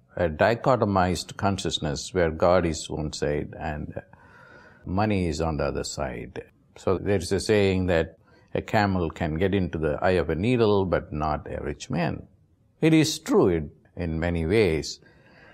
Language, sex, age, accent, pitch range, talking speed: English, male, 50-69, Indian, 90-130 Hz, 165 wpm